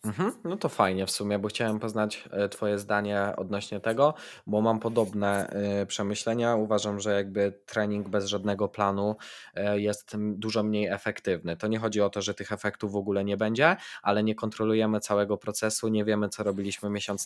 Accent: native